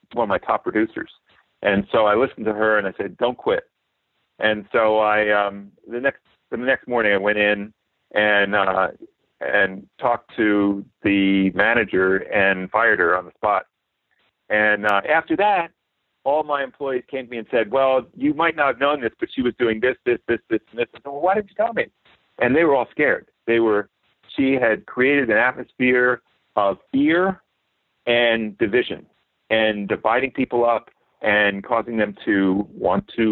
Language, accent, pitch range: English, American, 100-125 Hz